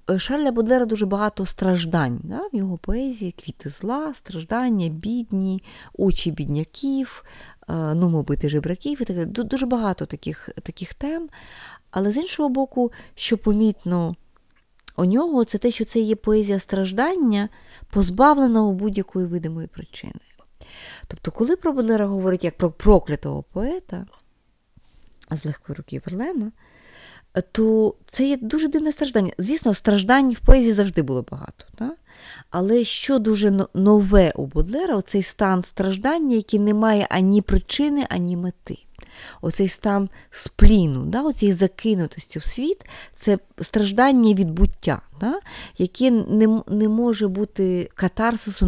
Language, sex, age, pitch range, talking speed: Ukrainian, female, 20-39, 180-235 Hz, 130 wpm